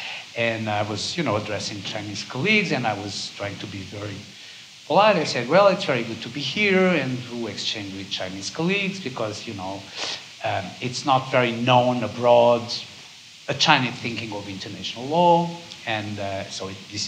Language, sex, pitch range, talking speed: English, male, 105-145 Hz, 175 wpm